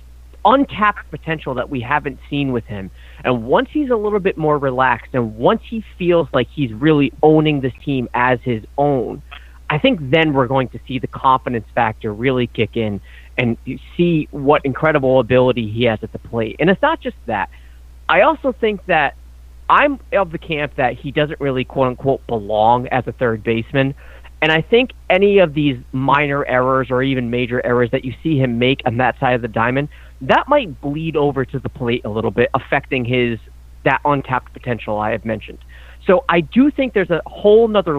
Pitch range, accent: 115-150 Hz, American